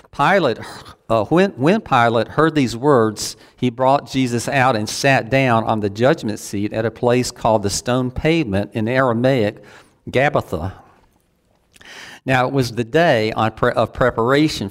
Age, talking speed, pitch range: 50-69, 155 wpm, 100-130 Hz